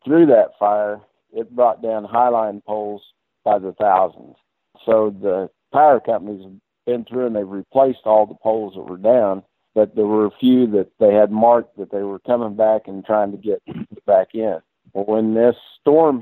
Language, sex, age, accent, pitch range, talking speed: English, male, 50-69, American, 100-115 Hz, 185 wpm